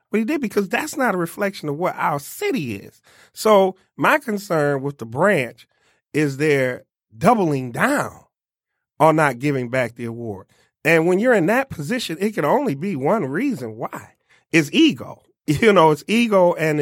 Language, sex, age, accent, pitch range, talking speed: English, male, 30-49, American, 135-195 Hz, 175 wpm